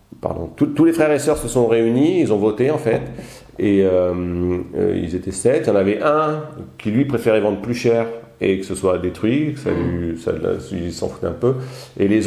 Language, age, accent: French, 40-59, French